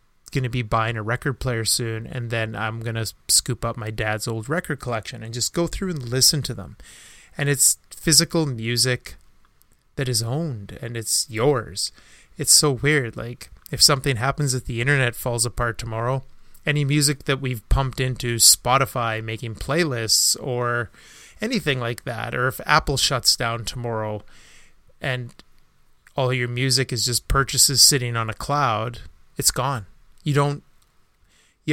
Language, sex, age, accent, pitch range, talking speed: English, male, 30-49, American, 115-140 Hz, 165 wpm